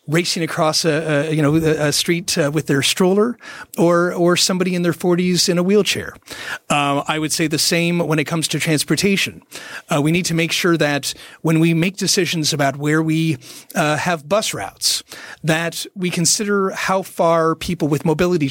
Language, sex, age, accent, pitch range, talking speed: English, male, 40-59, American, 155-185 Hz, 180 wpm